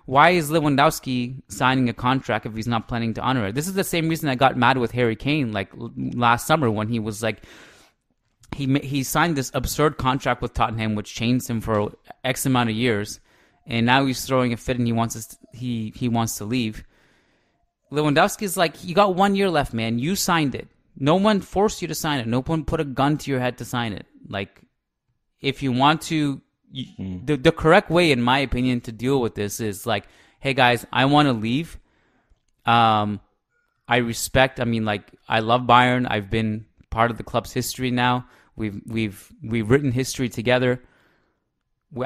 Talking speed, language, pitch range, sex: 200 wpm, English, 115-145 Hz, male